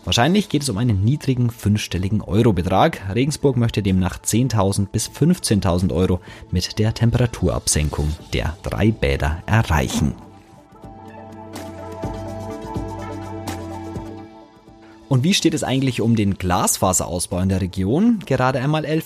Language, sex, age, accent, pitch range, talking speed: German, male, 30-49, German, 90-115 Hz, 110 wpm